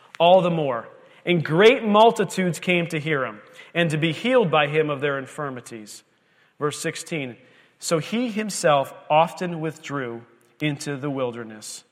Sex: male